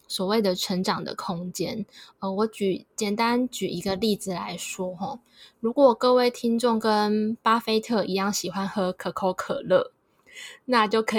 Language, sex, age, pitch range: Chinese, female, 10-29, 190-230 Hz